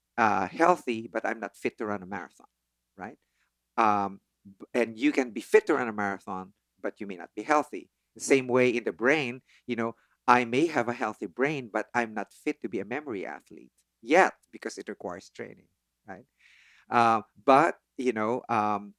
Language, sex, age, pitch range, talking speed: English, male, 50-69, 110-140 Hz, 195 wpm